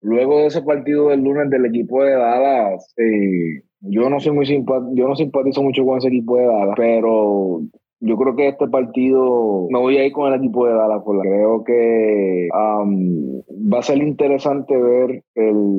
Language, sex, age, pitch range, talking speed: Spanish, male, 20-39, 105-130 Hz, 190 wpm